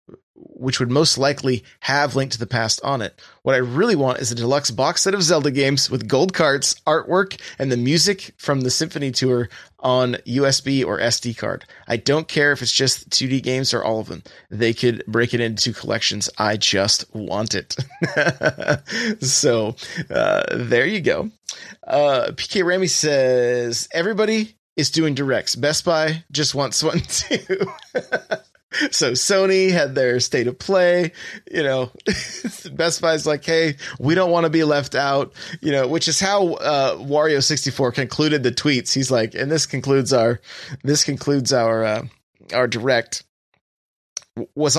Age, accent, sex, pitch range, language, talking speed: 30-49, American, male, 125-160 Hz, English, 165 wpm